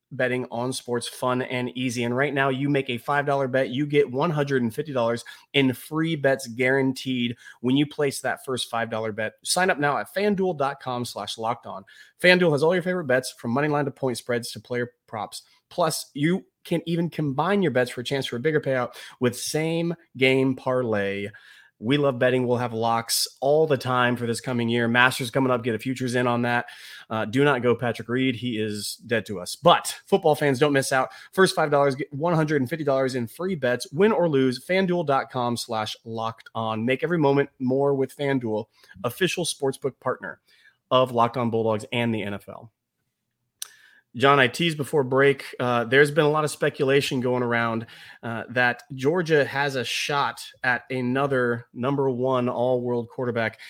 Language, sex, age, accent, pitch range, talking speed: English, male, 30-49, American, 120-145 Hz, 185 wpm